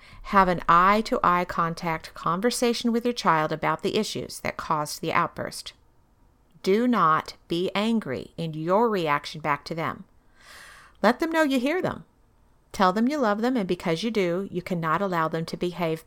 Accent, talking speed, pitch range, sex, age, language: American, 180 wpm, 170-240 Hz, female, 50-69, English